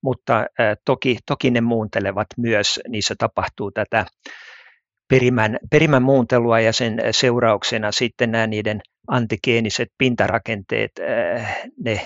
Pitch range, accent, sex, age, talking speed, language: 105-125 Hz, native, male, 60-79, 105 wpm, Finnish